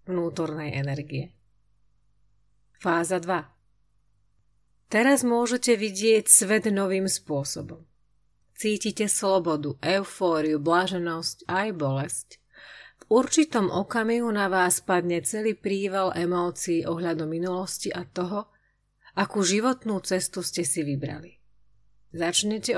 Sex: female